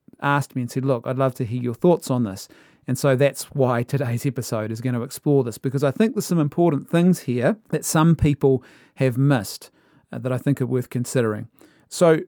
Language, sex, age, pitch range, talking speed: English, male, 40-59, 120-150 Hz, 220 wpm